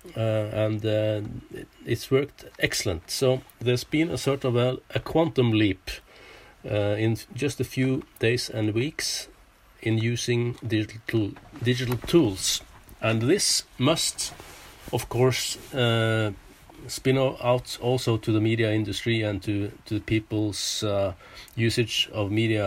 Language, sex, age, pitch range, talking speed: English, male, 50-69, 105-130 Hz, 130 wpm